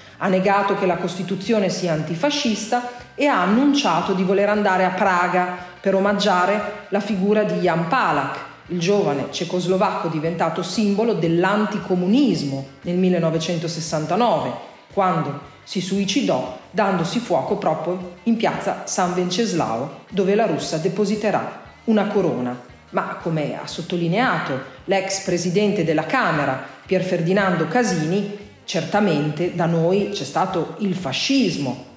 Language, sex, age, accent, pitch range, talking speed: Italian, female, 40-59, native, 165-205 Hz, 120 wpm